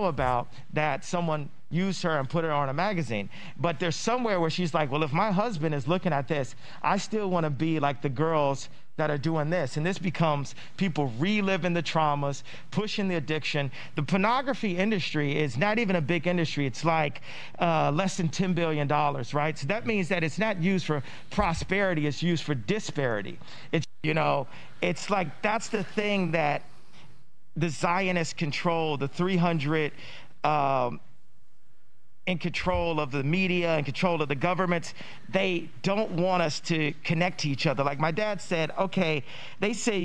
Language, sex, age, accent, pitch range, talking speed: Dutch, male, 50-69, American, 150-185 Hz, 180 wpm